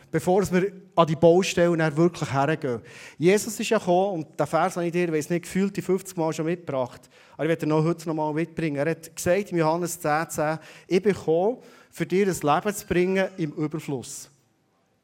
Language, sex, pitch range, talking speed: German, male, 155-195 Hz, 195 wpm